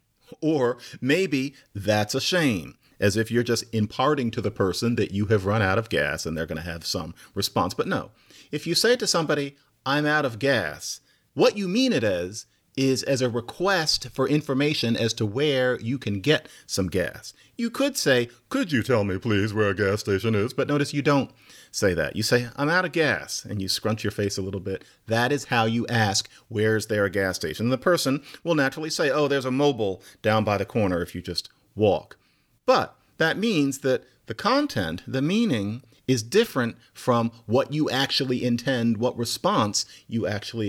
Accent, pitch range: American, 105-145 Hz